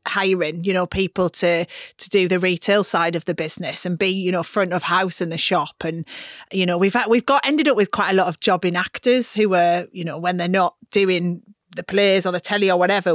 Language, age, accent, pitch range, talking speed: English, 30-49, British, 175-210 Hz, 245 wpm